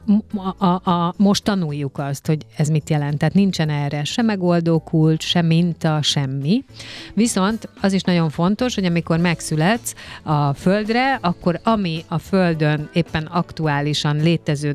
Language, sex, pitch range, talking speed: Hungarian, female, 150-175 Hz, 140 wpm